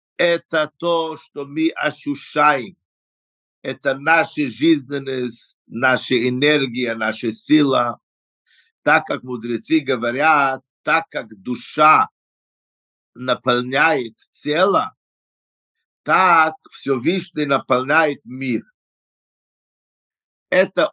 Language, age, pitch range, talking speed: Russian, 50-69, 120-165 Hz, 75 wpm